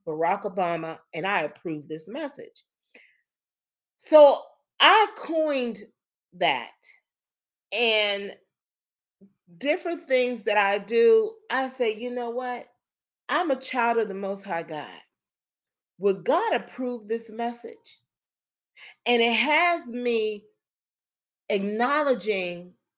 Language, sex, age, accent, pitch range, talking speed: English, female, 40-59, American, 175-250 Hz, 105 wpm